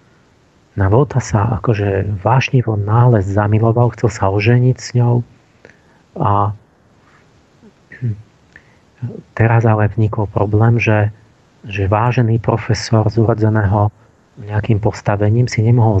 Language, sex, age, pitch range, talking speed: Slovak, male, 40-59, 105-120 Hz, 105 wpm